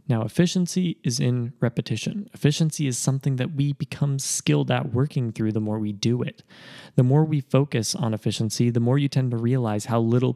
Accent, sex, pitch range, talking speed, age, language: American, male, 120-155 Hz, 195 wpm, 20-39, English